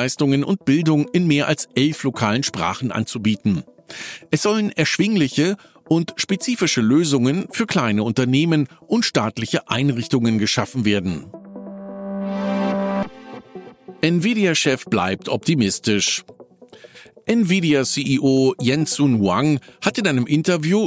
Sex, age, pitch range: male, 50-69, 125-180 Hz